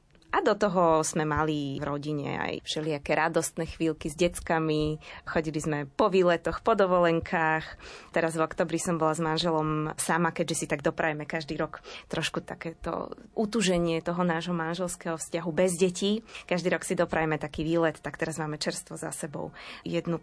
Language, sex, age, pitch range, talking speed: Slovak, female, 20-39, 160-180 Hz, 165 wpm